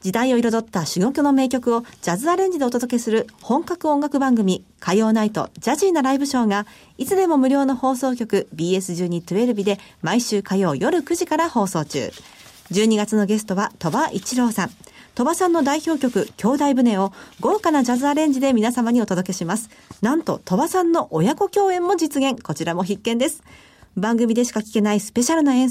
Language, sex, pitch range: Japanese, female, 210-275 Hz